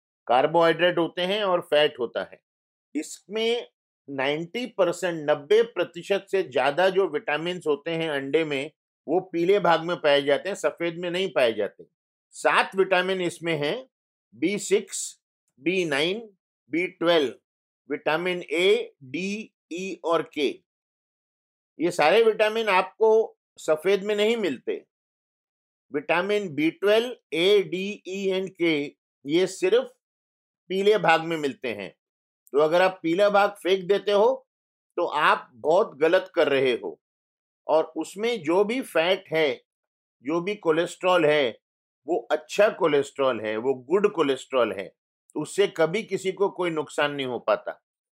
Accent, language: native, Hindi